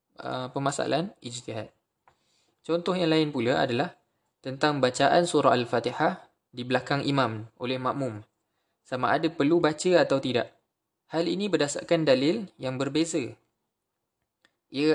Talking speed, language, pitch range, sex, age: 120 wpm, Malay, 120-155 Hz, male, 20-39